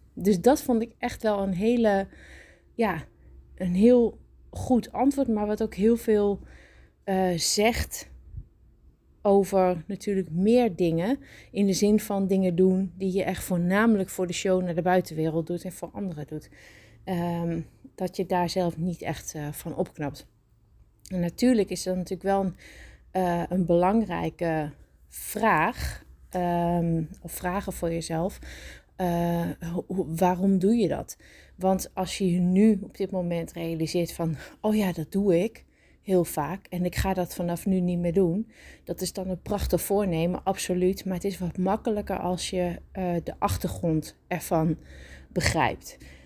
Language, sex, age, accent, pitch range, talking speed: Dutch, female, 20-39, Dutch, 165-195 Hz, 150 wpm